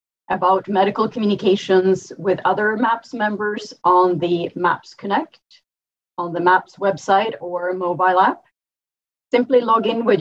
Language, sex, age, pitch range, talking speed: English, female, 30-49, 180-210 Hz, 130 wpm